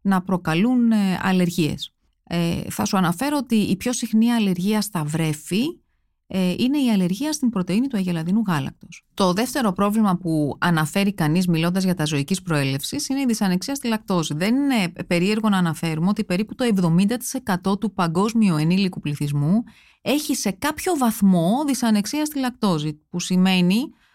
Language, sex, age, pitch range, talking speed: Greek, female, 30-49, 165-220 Hz, 150 wpm